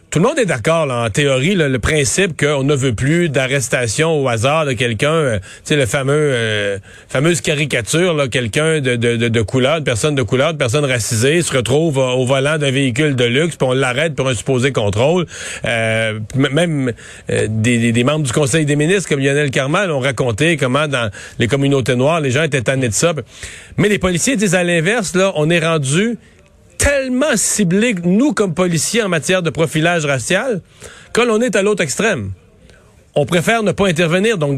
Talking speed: 195 wpm